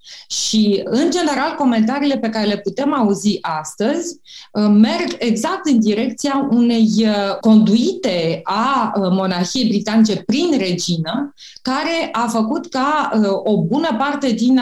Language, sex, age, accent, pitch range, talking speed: Romanian, female, 20-39, native, 200-265 Hz, 120 wpm